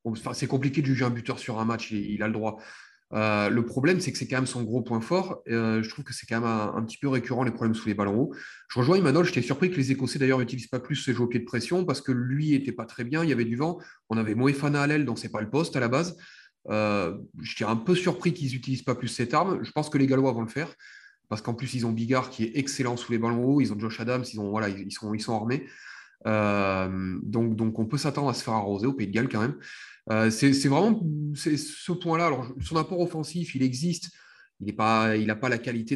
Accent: French